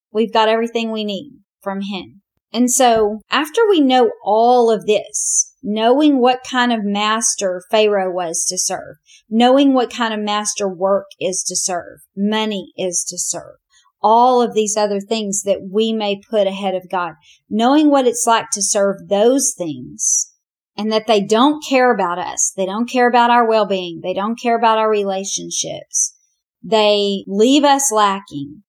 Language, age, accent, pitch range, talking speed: English, 40-59, American, 195-245 Hz, 170 wpm